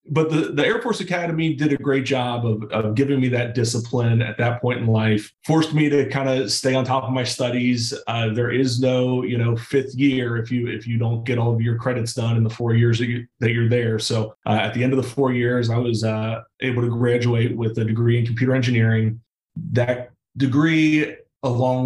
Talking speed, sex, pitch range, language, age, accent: 230 wpm, male, 120-135 Hz, English, 30-49, American